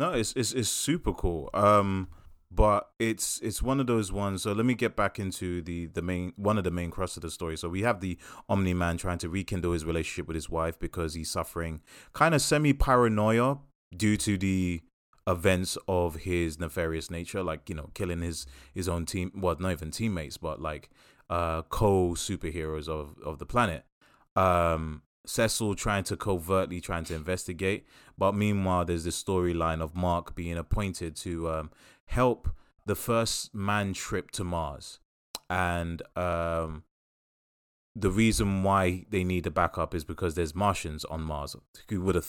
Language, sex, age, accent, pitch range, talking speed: English, male, 20-39, British, 85-100 Hz, 175 wpm